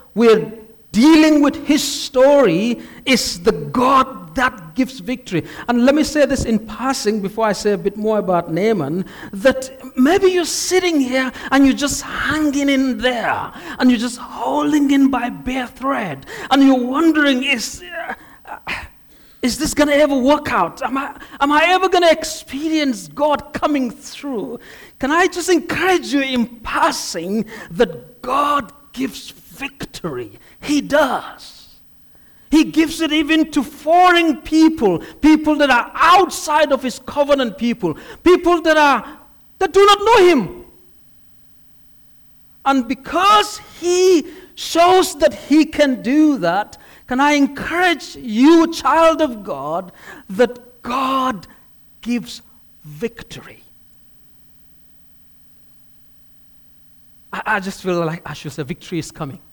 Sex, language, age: male, English, 50-69